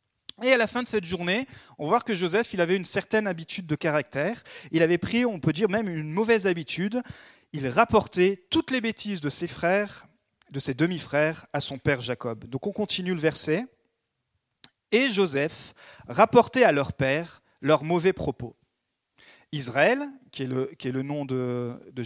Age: 40-59